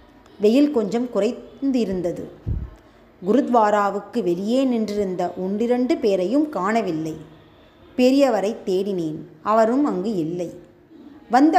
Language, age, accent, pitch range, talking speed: Tamil, 20-39, native, 210-285 Hz, 80 wpm